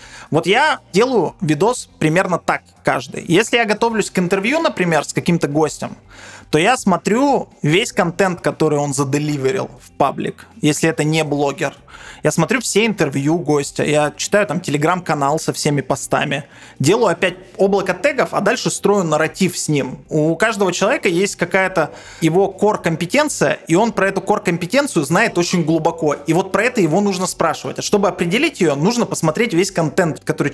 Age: 20-39